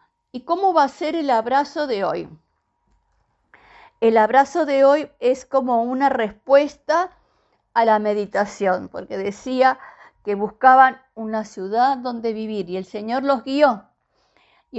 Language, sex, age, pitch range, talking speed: Spanish, female, 50-69, 215-285 Hz, 140 wpm